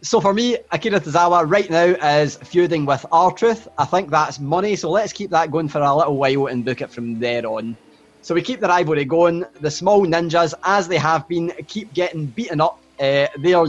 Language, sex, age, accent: English, male, 20-39, British